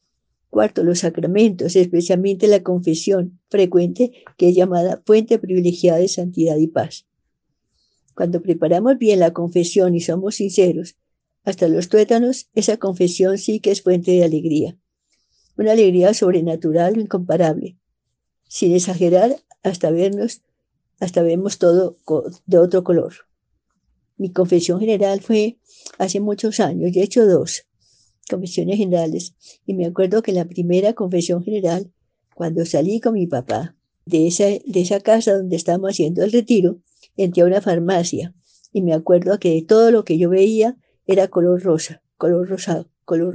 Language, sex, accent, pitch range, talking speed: Spanish, female, American, 170-200 Hz, 145 wpm